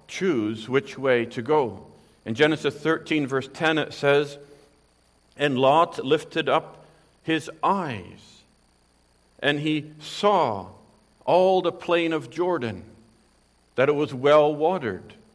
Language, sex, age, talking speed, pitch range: English, male, 50-69, 120 wpm, 110-160 Hz